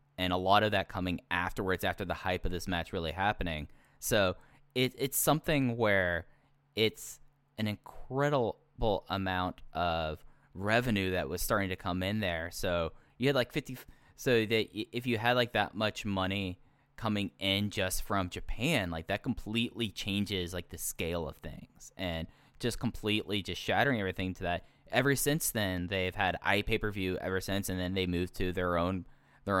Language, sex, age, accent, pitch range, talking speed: English, male, 10-29, American, 90-115 Hz, 175 wpm